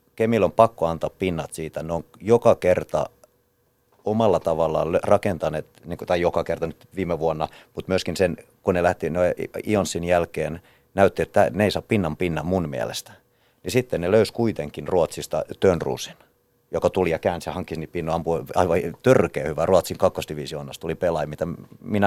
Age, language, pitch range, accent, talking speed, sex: 30-49, Finnish, 80-95 Hz, native, 170 wpm, male